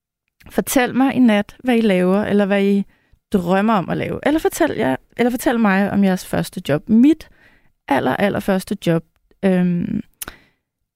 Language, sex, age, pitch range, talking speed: Danish, female, 30-49, 185-225 Hz, 160 wpm